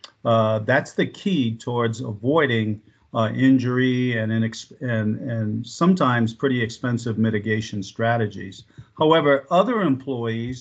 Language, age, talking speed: English, 50-69, 105 wpm